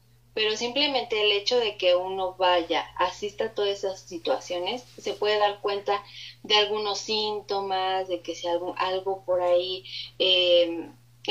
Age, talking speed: 20-39, 150 wpm